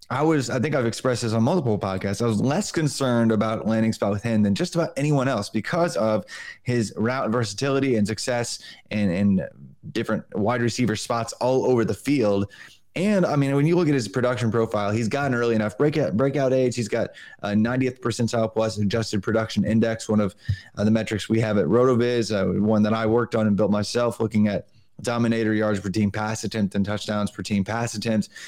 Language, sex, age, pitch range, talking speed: English, male, 20-39, 105-130 Hz, 210 wpm